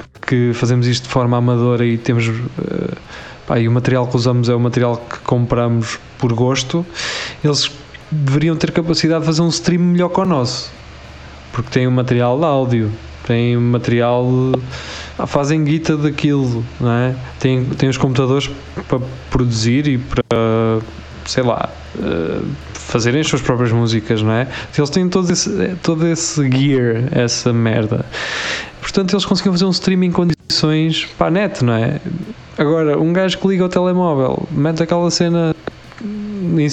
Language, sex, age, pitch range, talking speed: Portuguese, male, 20-39, 120-155 Hz, 155 wpm